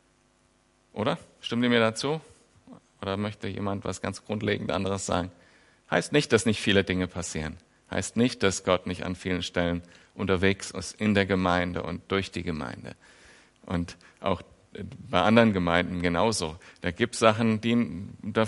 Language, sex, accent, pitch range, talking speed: German, male, German, 90-115 Hz, 155 wpm